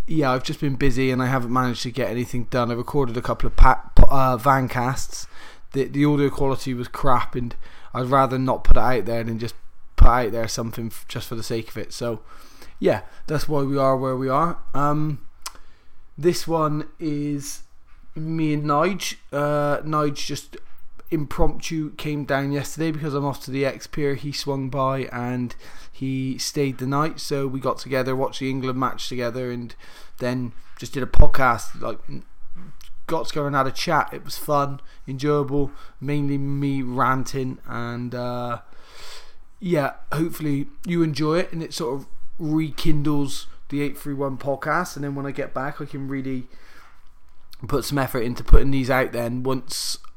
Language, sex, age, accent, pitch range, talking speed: English, male, 20-39, British, 125-145 Hz, 180 wpm